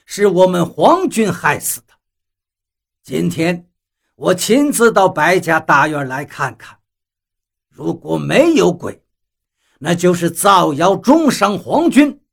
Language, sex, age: Chinese, male, 60-79